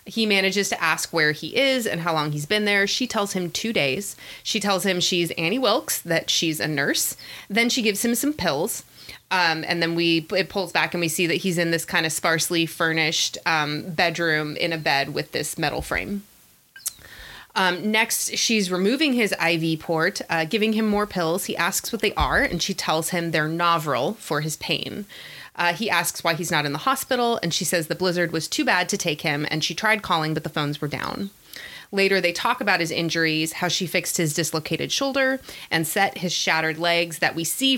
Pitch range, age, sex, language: 160-195 Hz, 20-39, female, English